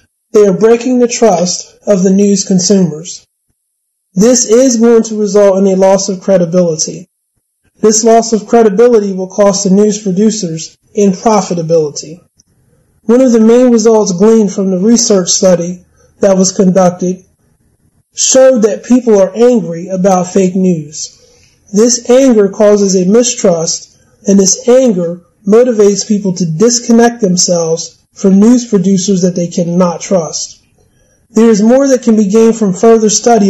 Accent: American